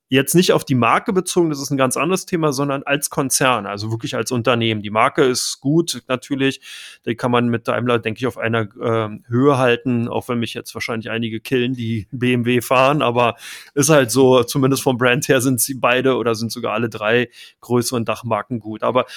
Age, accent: 30-49, German